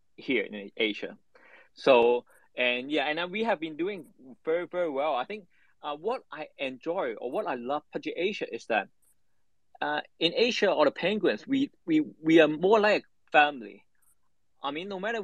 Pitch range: 140-200 Hz